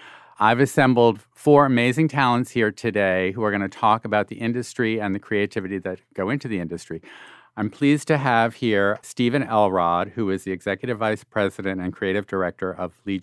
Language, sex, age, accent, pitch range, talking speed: English, male, 50-69, American, 95-125 Hz, 185 wpm